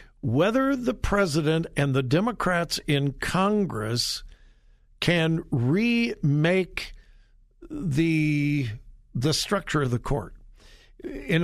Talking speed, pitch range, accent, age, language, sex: 85 wpm, 135-180 Hz, American, 60-79, English, male